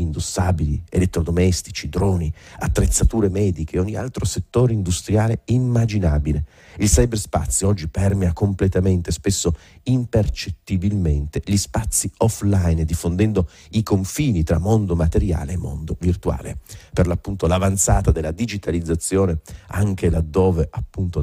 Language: Italian